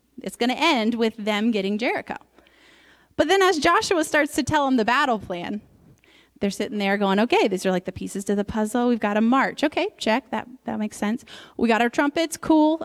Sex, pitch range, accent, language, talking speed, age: female, 220-310 Hz, American, English, 220 wpm, 30-49